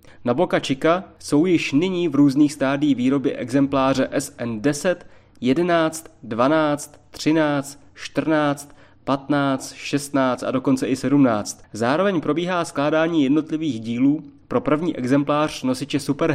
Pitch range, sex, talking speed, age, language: 135-170 Hz, male, 115 wpm, 30-49, Czech